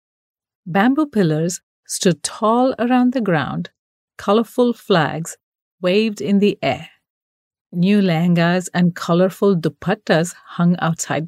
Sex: female